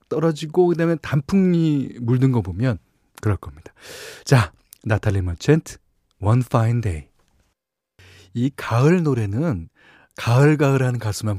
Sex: male